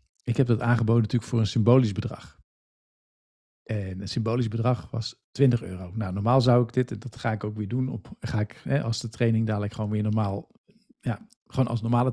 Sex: male